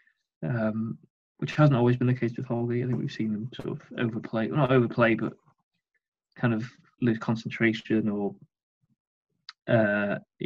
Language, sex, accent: English, male, British